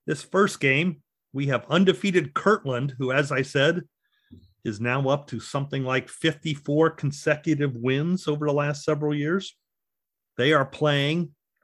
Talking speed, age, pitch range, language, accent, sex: 145 wpm, 40-59, 125-165 Hz, English, American, male